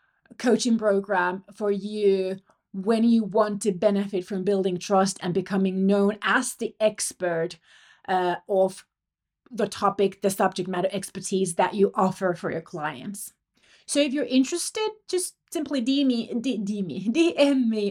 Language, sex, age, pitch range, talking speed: English, female, 30-49, 190-255 Hz, 135 wpm